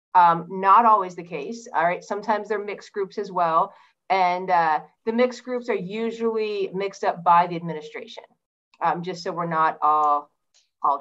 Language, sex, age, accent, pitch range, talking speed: English, female, 30-49, American, 185-230 Hz, 175 wpm